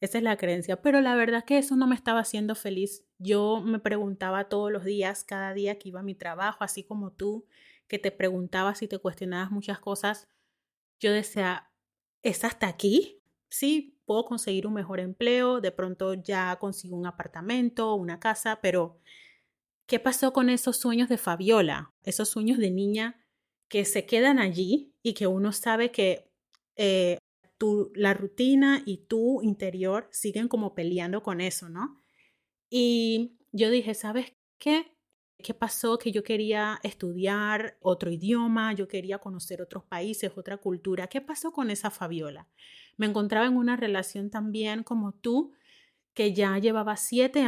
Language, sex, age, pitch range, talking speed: Spanish, female, 30-49, 195-235 Hz, 165 wpm